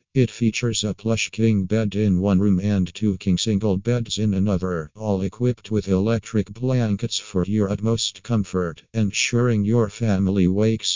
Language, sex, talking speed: English, male, 160 wpm